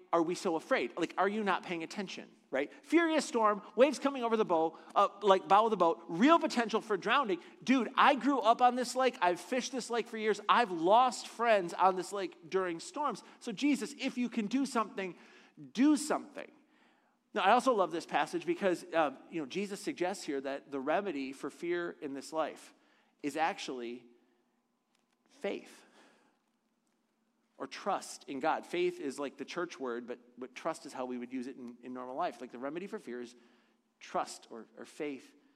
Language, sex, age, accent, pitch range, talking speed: English, male, 40-59, American, 140-235 Hz, 195 wpm